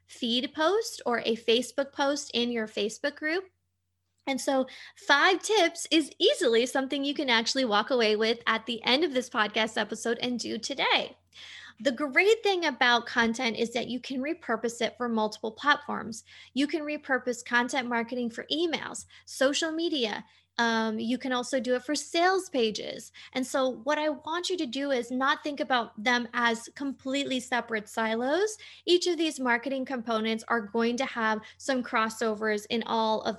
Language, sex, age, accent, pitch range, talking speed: English, female, 20-39, American, 230-290 Hz, 175 wpm